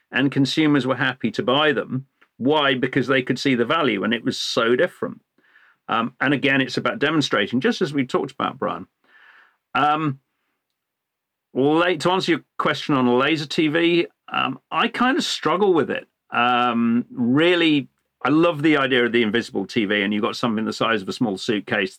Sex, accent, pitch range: male, British, 115-145 Hz